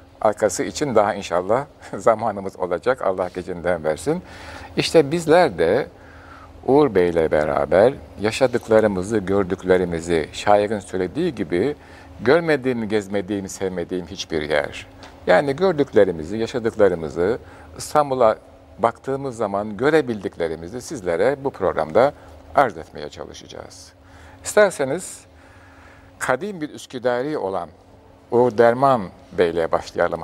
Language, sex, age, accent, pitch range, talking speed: Turkish, male, 60-79, native, 90-115 Hz, 95 wpm